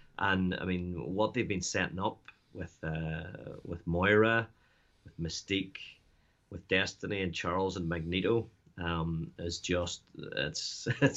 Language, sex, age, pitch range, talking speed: English, male, 30-49, 90-105 Hz, 125 wpm